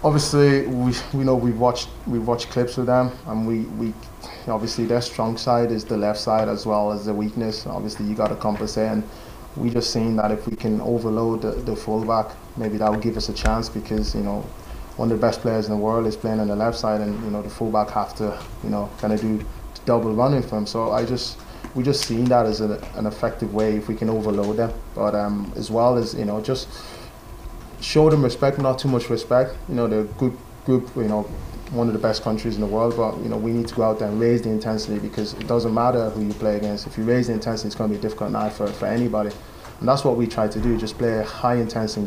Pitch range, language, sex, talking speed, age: 110-120 Hz, English, male, 260 wpm, 20-39